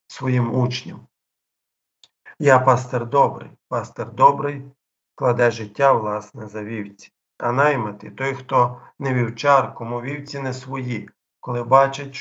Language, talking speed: Ukrainian, 120 wpm